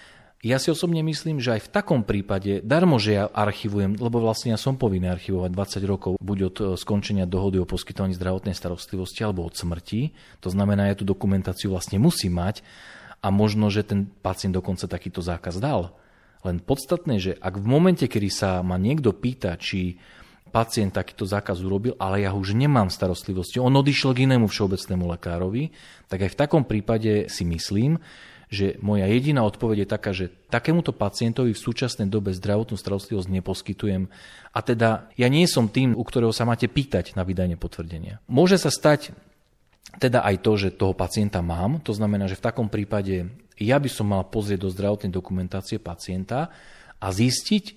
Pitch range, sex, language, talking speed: 95-120 Hz, male, Slovak, 175 wpm